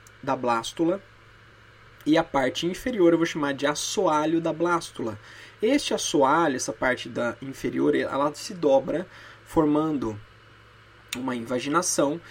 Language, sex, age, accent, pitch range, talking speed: Portuguese, male, 20-39, Brazilian, 135-185 Hz, 120 wpm